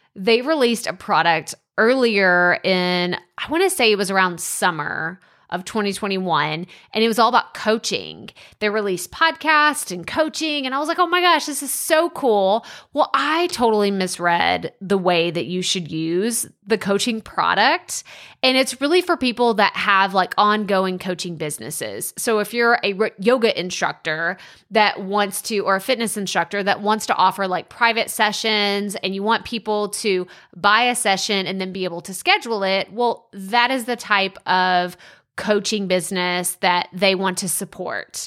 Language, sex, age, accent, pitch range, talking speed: English, female, 20-39, American, 185-245 Hz, 170 wpm